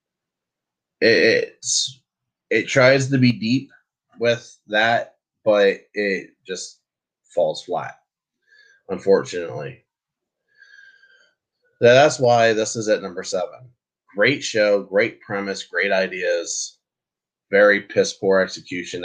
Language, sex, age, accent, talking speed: English, male, 20-39, American, 100 wpm